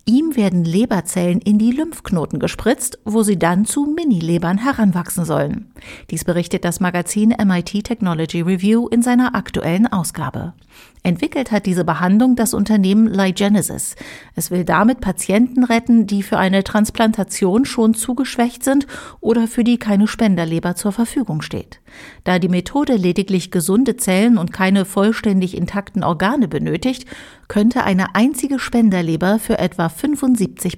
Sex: female